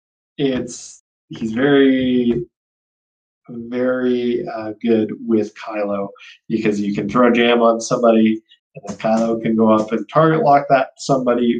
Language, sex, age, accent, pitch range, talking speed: English, male, 20-39, American, 105-145 Hz, 140 wpm